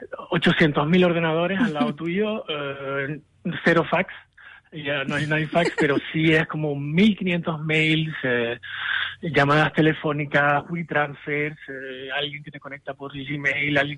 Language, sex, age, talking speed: Spanish, male, 30-49, 140 wpm